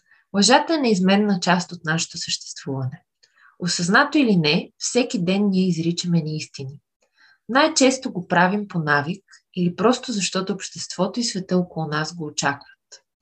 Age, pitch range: 20-39, 170-220 Hz